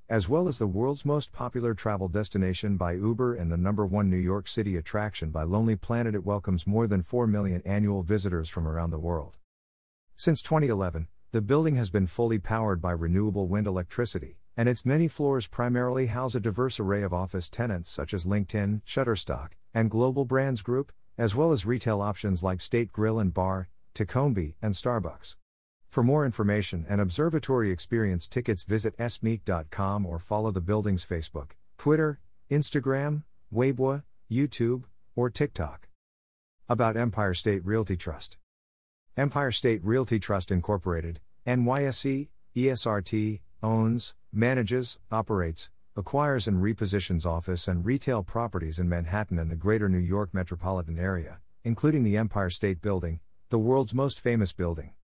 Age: 50-69